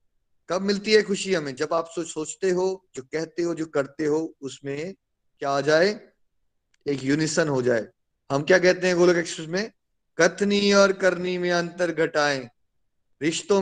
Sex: male